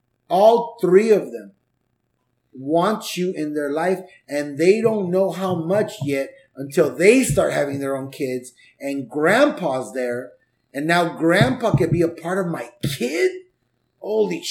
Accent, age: American, 30-49